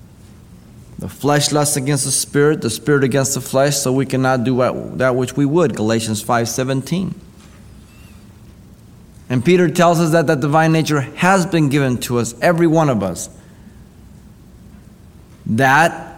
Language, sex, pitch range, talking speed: English, male, 115-145 Hz, 150 wpm